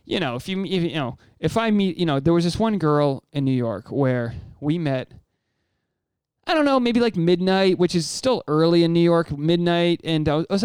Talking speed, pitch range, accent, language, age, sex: 220 wpm, 130-175 Hz, American, English, 20-39, male